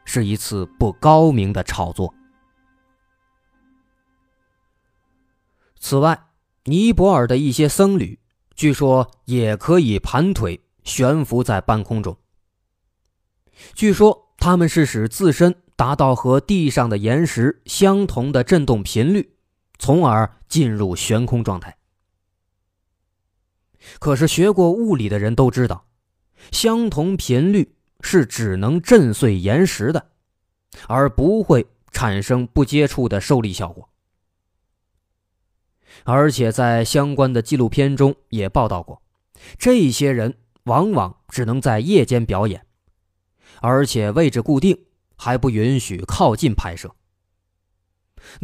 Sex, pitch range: male, 95-145 Hz